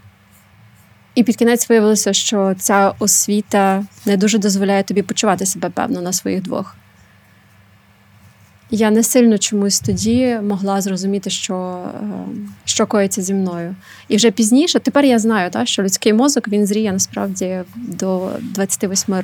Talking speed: 135 wpm